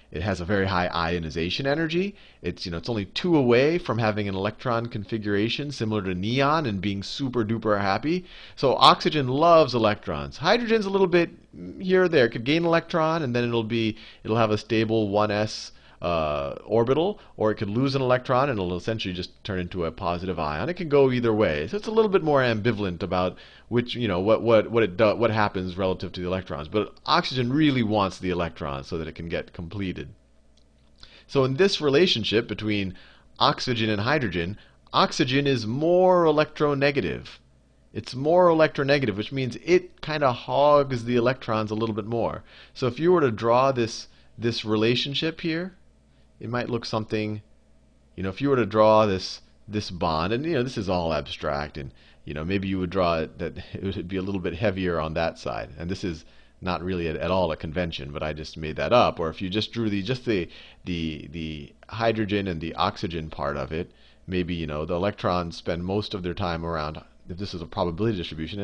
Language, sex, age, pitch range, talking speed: English, male, 40-59, 85-125 Hz, 205 wpm